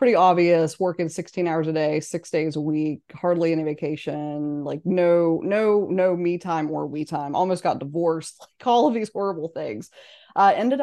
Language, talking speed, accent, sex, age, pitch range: English, 190 wpm, American, female, 20-39, 150-180 Hz